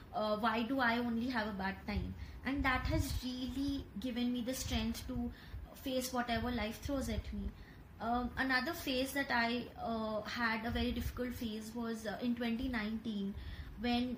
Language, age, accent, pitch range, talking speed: English, 20-39, Indian, 225-255 Hz, 170 wpm